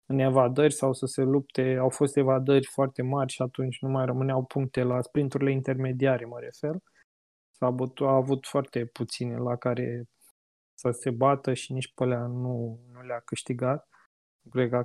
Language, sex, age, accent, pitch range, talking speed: Romanian, male, 20-39, native, 125-145 Hz, 175 wpm